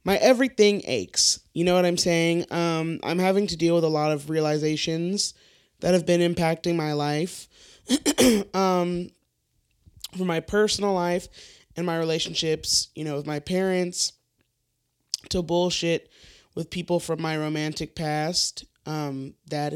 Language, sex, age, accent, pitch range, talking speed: English, male, 20-39, American, 145-175 Hz, 145 wpm